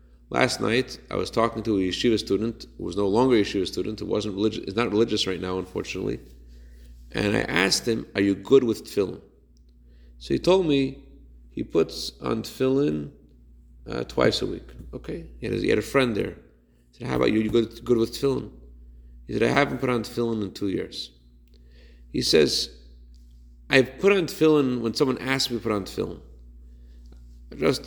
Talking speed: 195 wpm